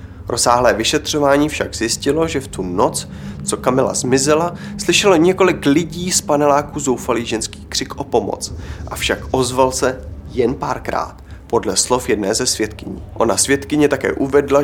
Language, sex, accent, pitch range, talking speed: Czech, male, native, 105-145 Hz, 150 wpm